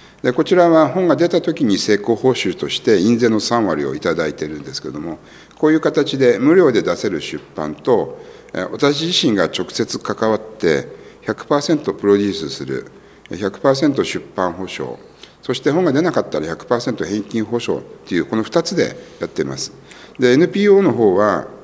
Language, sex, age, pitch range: Japanese, male, 60-79, 95-135 Hz